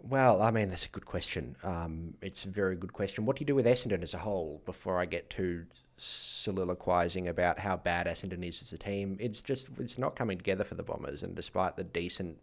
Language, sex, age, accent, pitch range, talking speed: English, male, 20-39, Australian, 90-110 Hz, 230 wpm